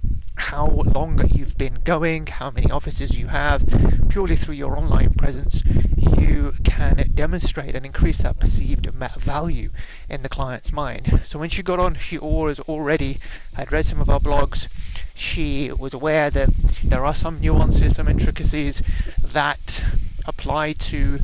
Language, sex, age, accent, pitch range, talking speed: English, male, 30-49, British, 110-165 Hz, 150 wpm